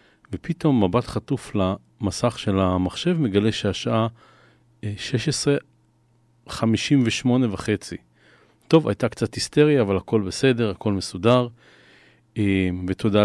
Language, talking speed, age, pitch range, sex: Hebrew, 90 wpm, 40-59, 100-130 Hz, male